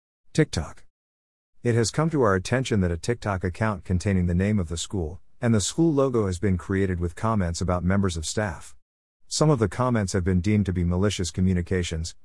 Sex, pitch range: male, 90-115 Hz